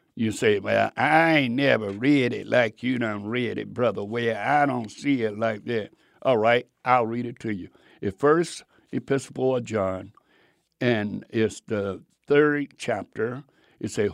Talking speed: 170 wpm